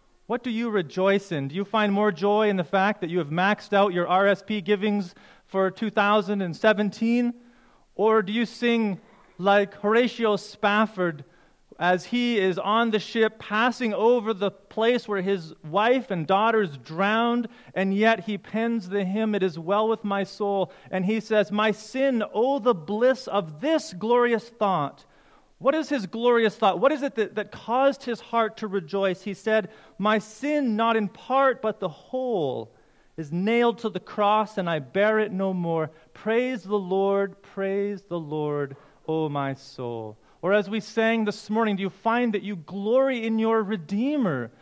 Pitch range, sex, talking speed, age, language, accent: 190-230 Hz, male, 175 wpm, 30-49, English, American